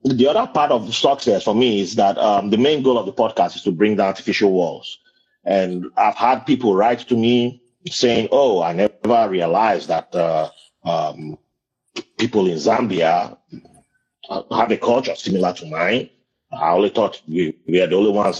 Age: 30-49